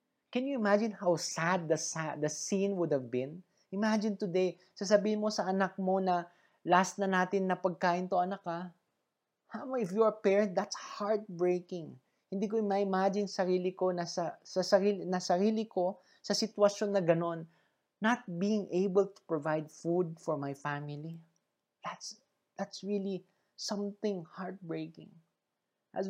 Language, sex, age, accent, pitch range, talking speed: English, male, 20-39, Filipino, 160-205 Hz, 145 wpm